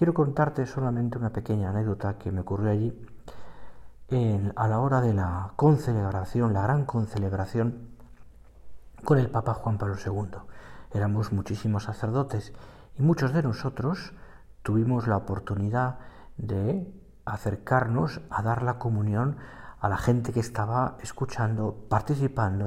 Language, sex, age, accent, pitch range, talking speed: Spanish, male, 50-69, Spanish, 105-130 Hz, 125 wpm